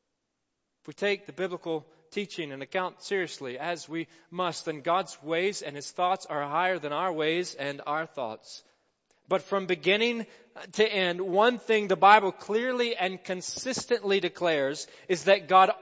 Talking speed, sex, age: 160 wpm, male, 30-49